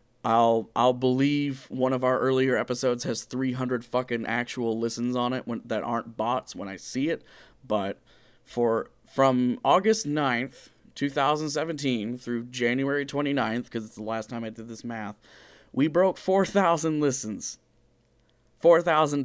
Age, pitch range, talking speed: 30-49, 115-145 Hz, 145 wpm